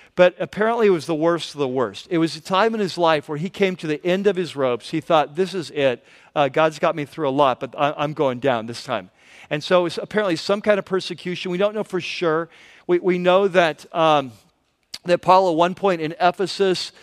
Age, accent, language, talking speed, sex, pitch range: 50-69, American, English, 245 wpm, male, 145-180 Hz